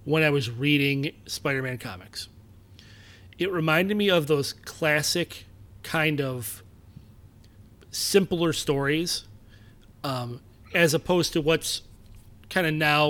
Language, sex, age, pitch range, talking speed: English, male, 30-49, 105-160 Hz, 110 wpm